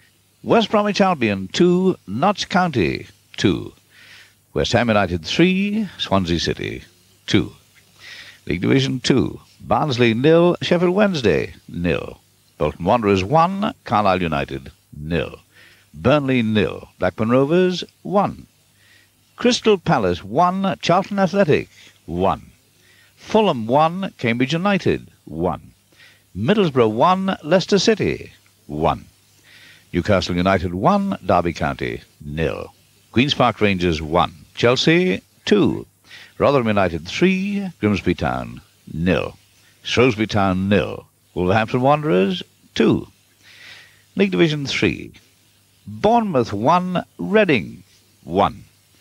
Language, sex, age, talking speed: English, male, 60-79, 100 wpm